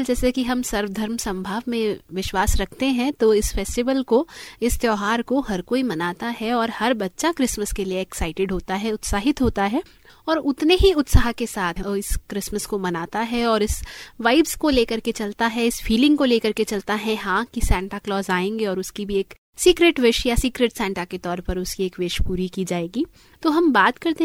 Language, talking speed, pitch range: Hindi, 210 wpm, 195-255 Hz